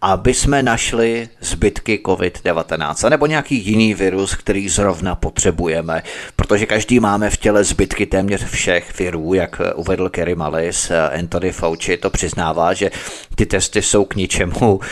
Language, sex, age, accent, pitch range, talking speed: Czech, male, 30-49, native, 95-115 Hz, 140 wpm